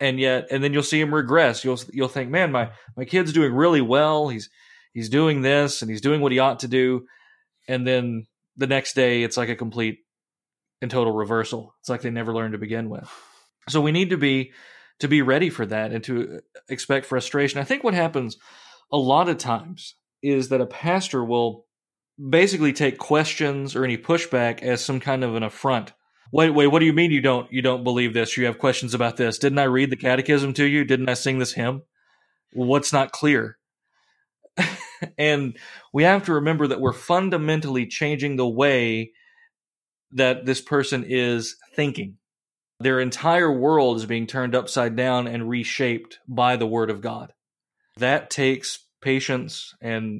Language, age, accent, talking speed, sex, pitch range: English, 30-49, American, 185 wpm, male, 120-145 Hz